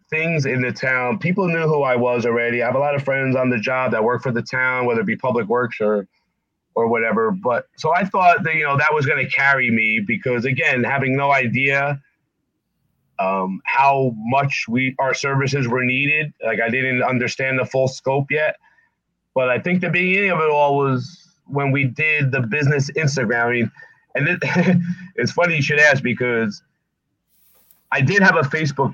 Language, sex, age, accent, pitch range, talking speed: English, male, 30-49, American, 125-155 Hz, 200 wpm